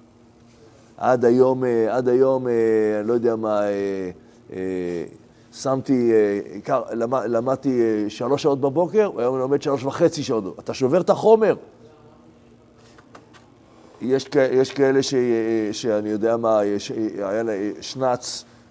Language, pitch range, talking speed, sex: Hebrew, 115-150 Hz, 105 wpm, male